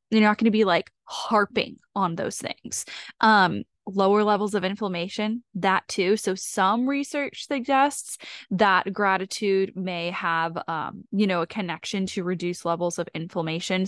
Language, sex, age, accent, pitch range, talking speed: English, female, 10-29, American, 180-230 Hz, 150 wpm